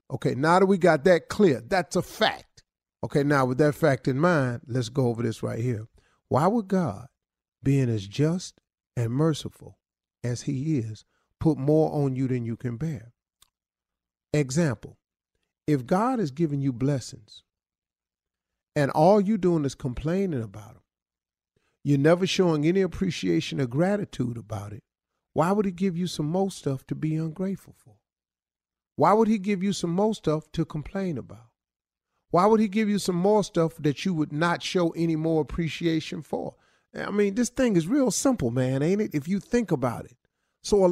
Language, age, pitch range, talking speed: English, 50-69, 130-185 Hz, 180 wpm